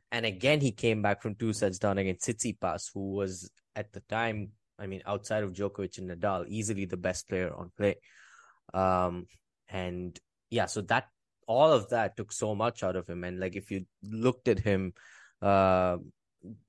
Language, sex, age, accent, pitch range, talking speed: English, male, 20-39, Indian, 95-110 Hz, 185 wpm